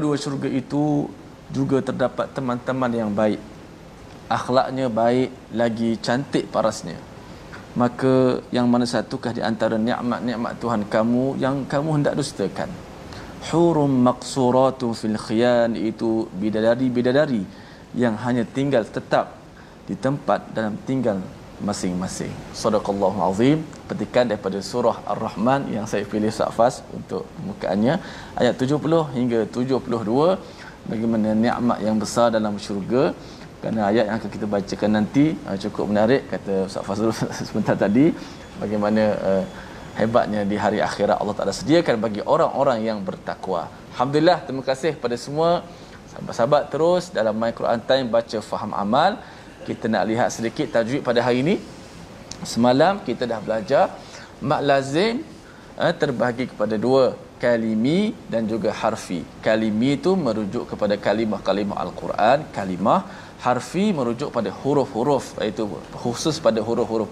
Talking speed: 125 wpm